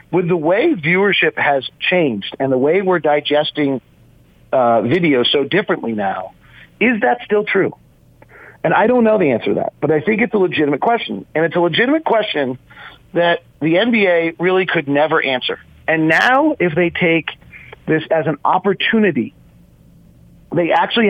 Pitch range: 145-185 Hz